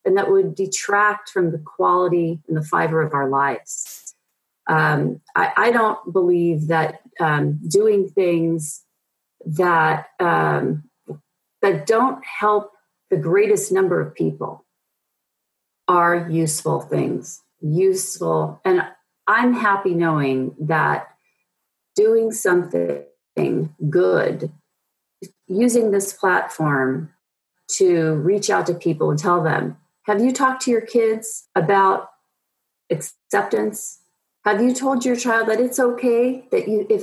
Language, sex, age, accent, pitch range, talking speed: English, female, 40-59, American, 160-230 Hz, 120 wpm